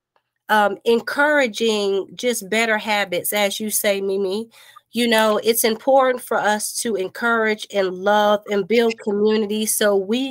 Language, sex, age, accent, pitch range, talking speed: English, female, 30-49, American, 205-235 Hz, 140 wpm